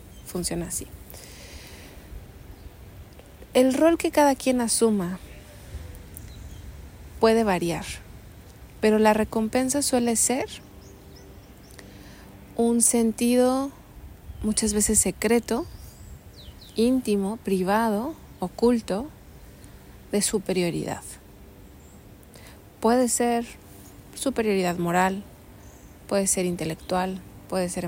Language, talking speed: Spanish, 75 wpm